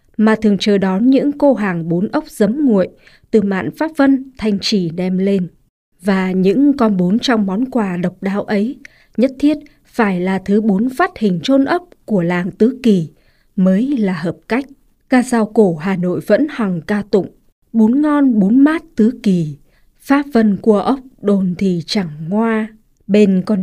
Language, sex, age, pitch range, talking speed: Vietnamese, female, 20-39, 190-250 Hz, 185 wpm